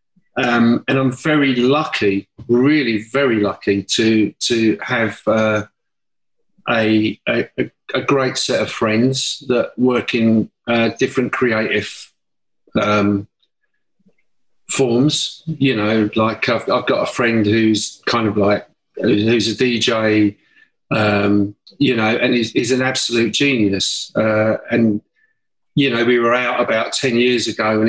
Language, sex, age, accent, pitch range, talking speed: English, male, 50-69, British, 110-145 Hz, 135 wpm